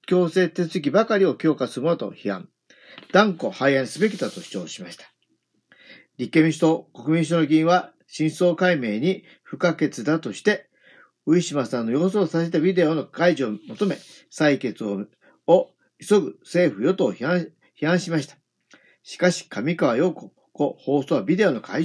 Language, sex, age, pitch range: Japanese, male, 50-69, 145-180 Hz